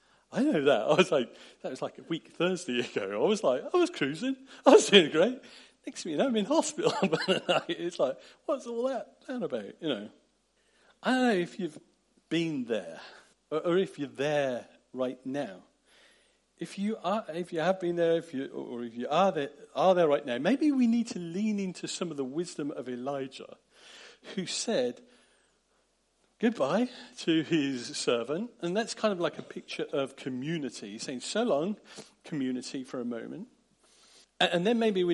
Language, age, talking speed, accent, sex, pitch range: English, 40-59, 185 wpm, British, male, 135-210 Hz